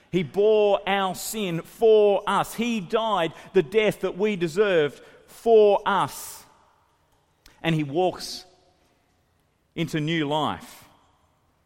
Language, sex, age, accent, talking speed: English, male, 40-59, Australian, 110 wpm